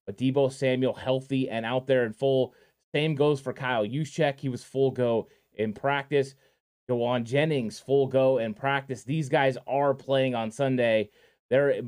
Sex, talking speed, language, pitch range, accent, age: male, 165 wpm, English, 130-150 Hz, American, 20-39